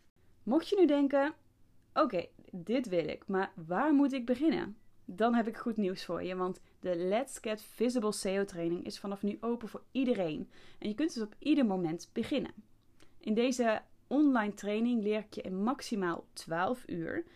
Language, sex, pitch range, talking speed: Dutch, female, 185-245 Hz, 185 wpm